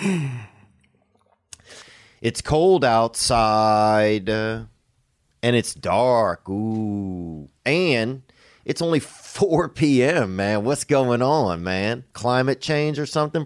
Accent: American